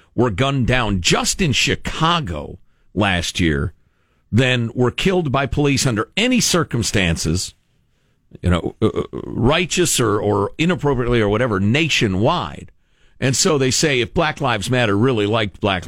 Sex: male